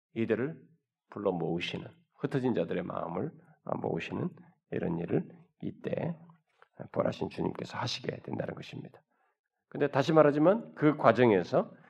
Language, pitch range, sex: Korean, 110-170 Hz, male